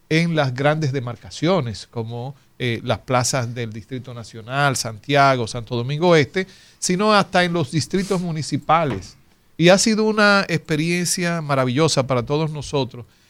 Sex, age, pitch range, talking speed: male, 50-69, 135-180 Hz, 135 wpm